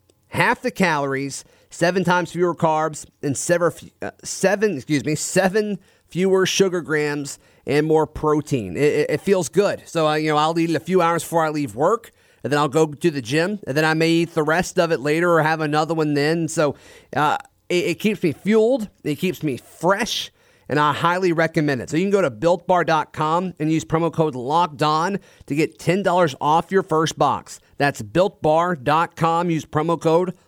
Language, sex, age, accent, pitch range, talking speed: English, male, 30-49, American, 150-180 Hz, 195 wpm